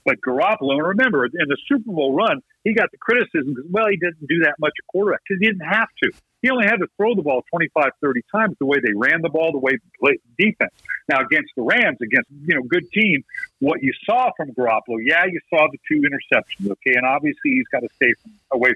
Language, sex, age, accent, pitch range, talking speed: English, male, 50-69, American, 140-210 Hz, 245 wpm